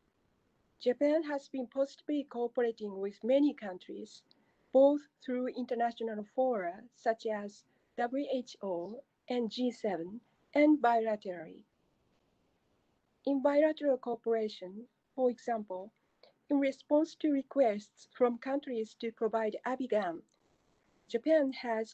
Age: 50-69